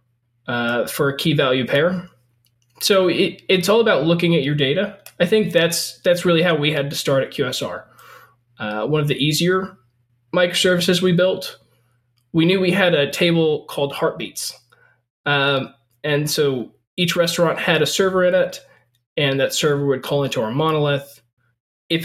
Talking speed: 165 wpm